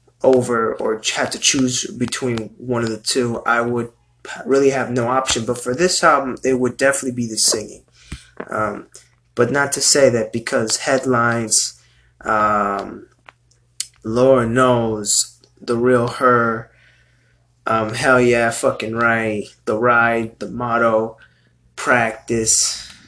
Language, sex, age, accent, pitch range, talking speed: English, male, 20-39, American, 115-135 Hz, 130 wpm